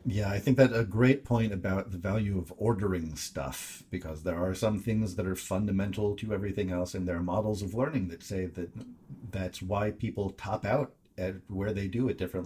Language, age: English, 40-59